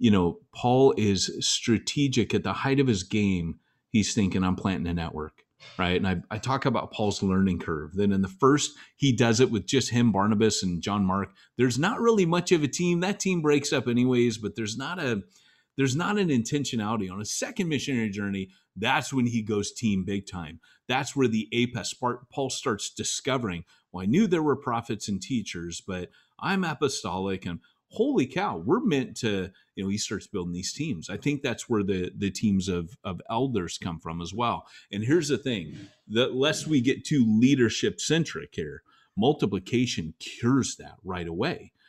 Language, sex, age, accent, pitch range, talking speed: English, male, 30-49, American, 95-135 Hz, 190 wpm